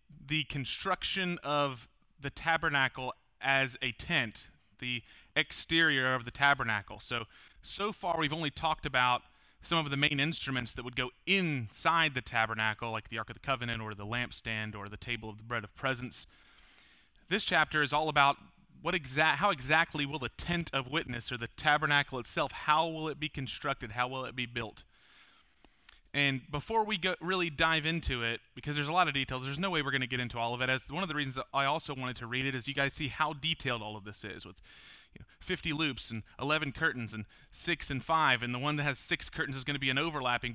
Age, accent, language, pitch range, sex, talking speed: 30-49, American, English, 125-155 Hz, male, 220 wpm